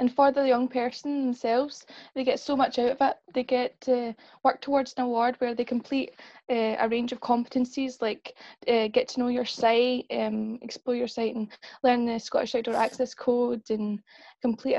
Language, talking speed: English, 195 wpm